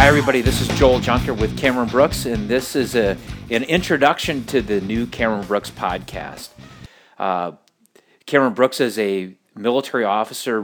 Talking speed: 160 wpm